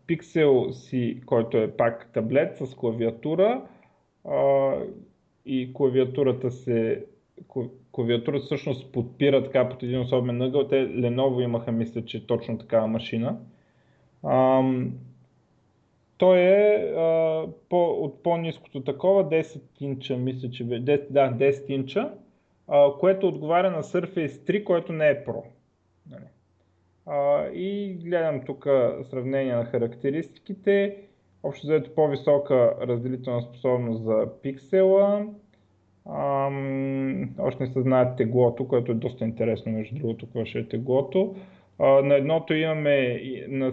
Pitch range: 120-150 Hz